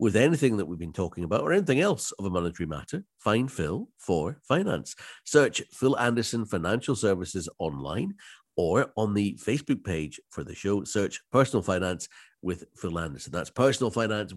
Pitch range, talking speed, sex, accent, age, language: 90-120 Hz, 170 wpm, male, British, 50-69, English